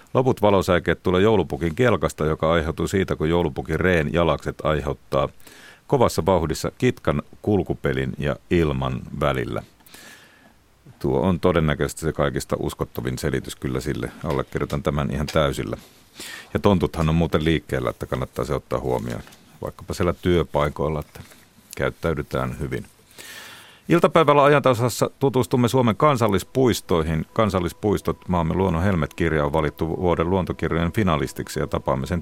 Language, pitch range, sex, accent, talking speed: Finnish, 75-100 Hz, male, native, 125 wpm